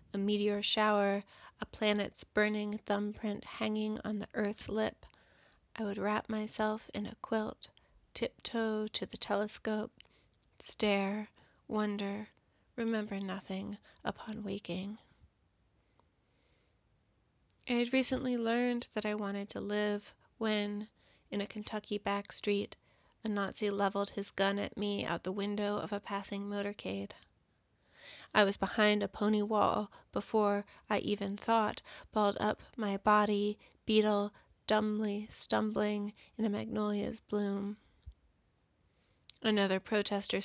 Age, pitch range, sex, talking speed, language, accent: 30-49, 200-215 Hz, female, 120 wpm, English, American